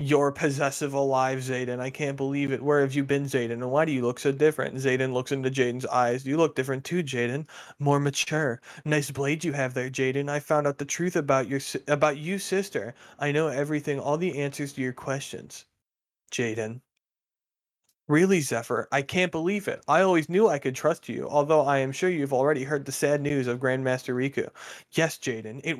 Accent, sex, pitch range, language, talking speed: American, male, 130-150 Hz, English, 200 wpm